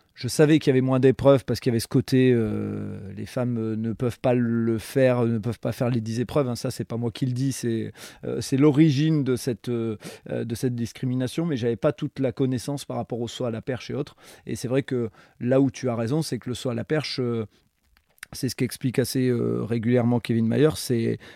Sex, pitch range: male, 115-135 Hz